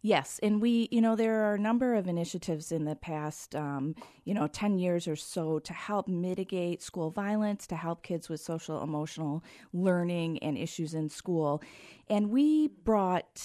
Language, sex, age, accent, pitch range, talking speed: English, female, 40-59, American, 160-215 Hz, 180 wpm